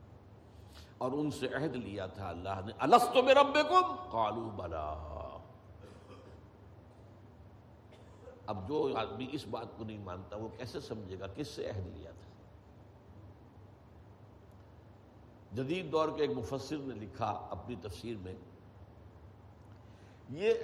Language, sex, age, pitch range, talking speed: Urdu, male, 60-79, 95-125 Hz, 115 wpm